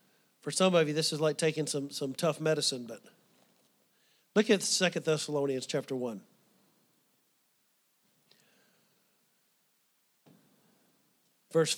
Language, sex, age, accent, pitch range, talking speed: English, male, 40-59, American, 160-215 Hz, 100 wpm